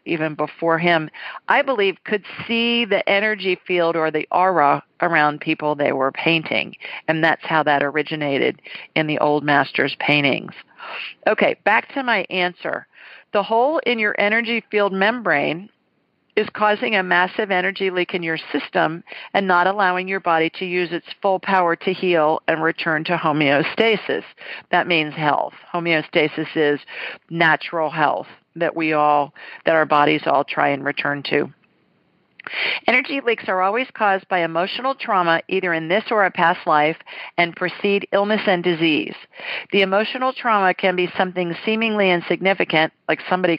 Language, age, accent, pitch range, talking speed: English, 50-69, American, 160-205 Hz, 155 wpm